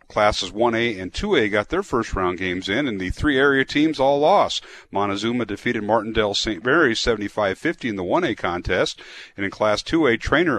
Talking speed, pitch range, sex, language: 170 wpm, 95-125 Hz, male, English